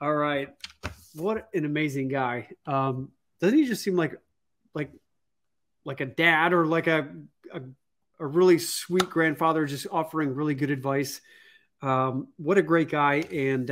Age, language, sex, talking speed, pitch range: 30-49, English, male, 155 wpm, 135-155 Hz